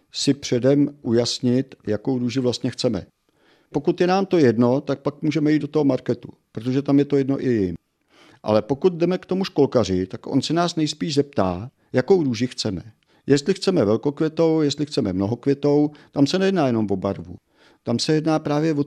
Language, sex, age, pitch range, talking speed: Czech, male, 50-69, 120-155 Hz, 185 wpm